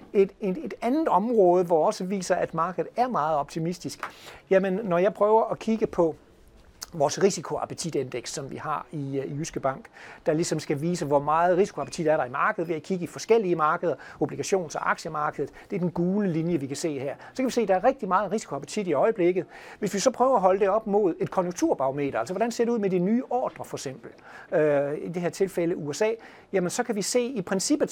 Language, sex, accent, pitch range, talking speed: Danish, male, native, 155-200 Hz, 225 wpm